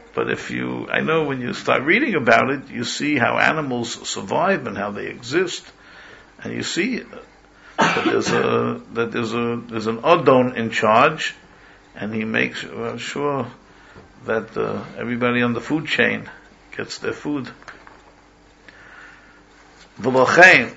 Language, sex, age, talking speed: English, male, 60-79, 135 wpm